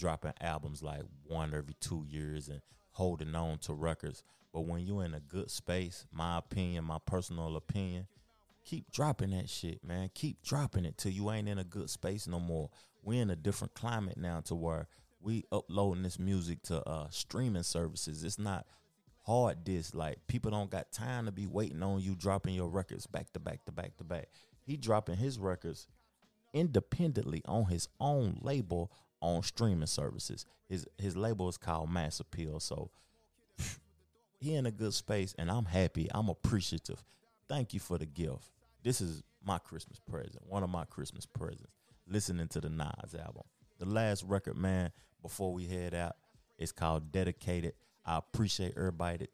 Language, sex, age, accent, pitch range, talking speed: English, male, 30-49, American, 85-105 Hz, 180 wpm